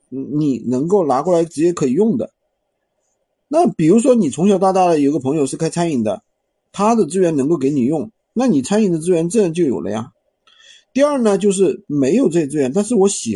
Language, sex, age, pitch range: Chinese, male, 50-69, 165-235 Hz